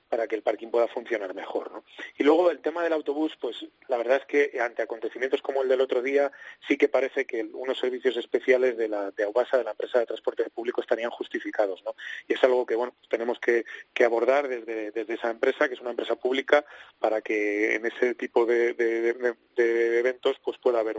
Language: Spanish